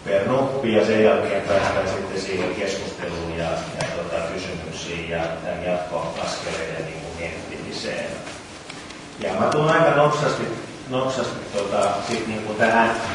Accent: Finnish